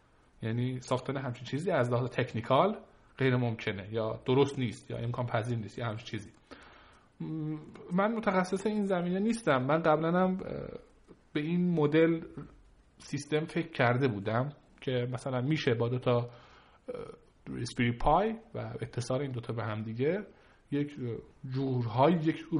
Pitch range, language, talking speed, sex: 120-165 Hz, Persian, 135 wpm, male